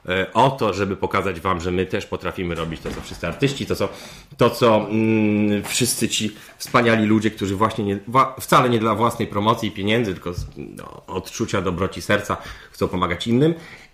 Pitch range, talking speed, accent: 85-110 Hz, 160 wpm, native